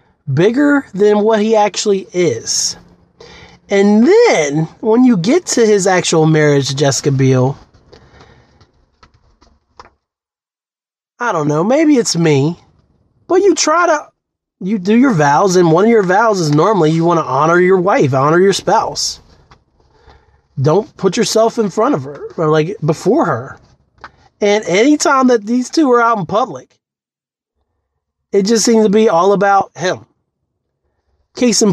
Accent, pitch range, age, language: American, 150-210 Hz, 30-49, English